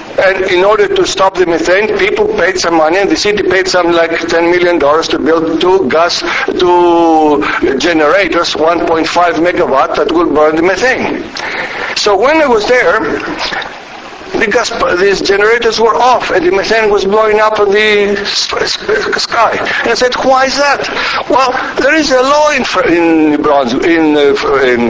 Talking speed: 160 wpm